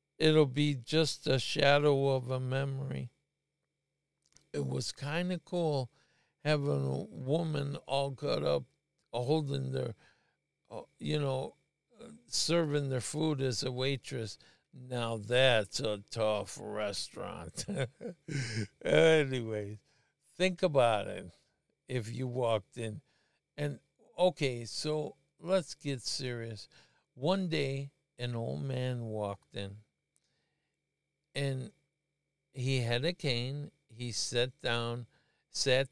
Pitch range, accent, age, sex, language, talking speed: 120-150 Hz, American, 60-79, male, English, 105 wpm